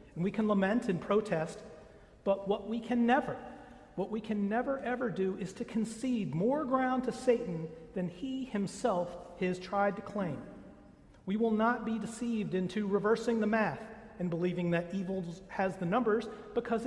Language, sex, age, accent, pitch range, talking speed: English, male, 40-59, American, 170-230 Hz, 170 wpm